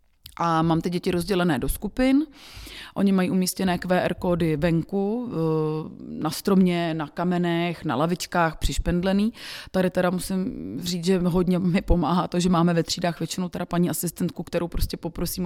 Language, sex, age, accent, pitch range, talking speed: Czech, female, 30-49, native, 165-185 Hz, 155 wpm